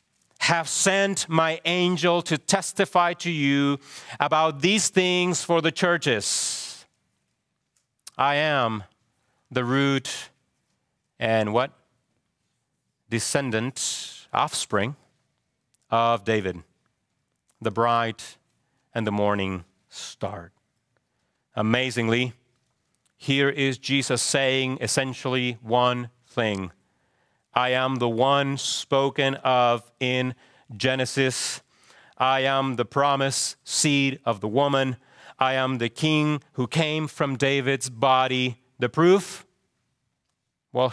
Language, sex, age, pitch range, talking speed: English, male, 40-59, 115-140 Hz, 95 wpm